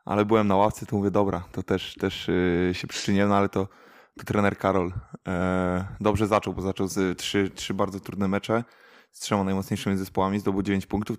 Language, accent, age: Polish, native, 20-39